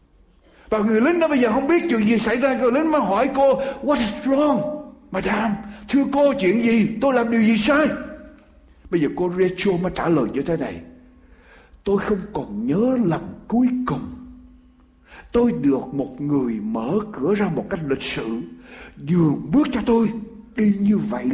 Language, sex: Ukrainian, male